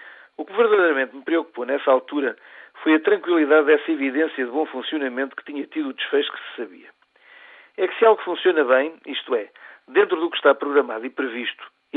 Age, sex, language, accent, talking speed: 50-69, male, Portuguese, Portuguese, 195 wpm